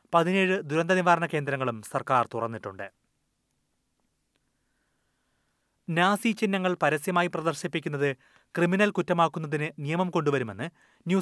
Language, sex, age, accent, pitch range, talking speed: Malayalam, male, 30-49, native, 135-175 Hz, 80 wpm